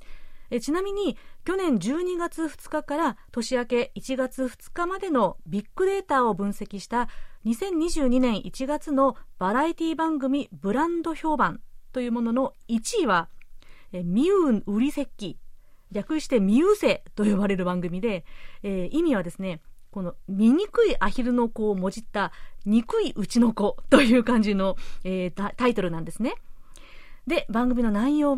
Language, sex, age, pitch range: Japanese, female, 40-59, 205-290 Hz